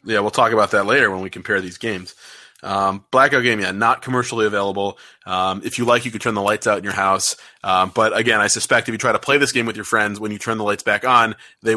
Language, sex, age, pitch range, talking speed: English, male, 20-39, 95-110 Hz, 275 wpm